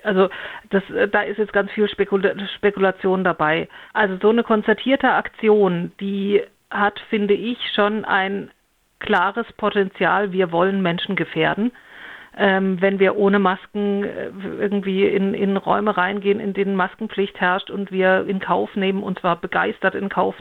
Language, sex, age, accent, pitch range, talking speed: German, female, 50-69, German, 190-215 Hz, 145 wpm